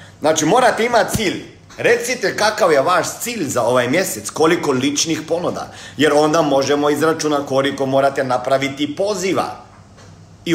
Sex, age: male, 50-69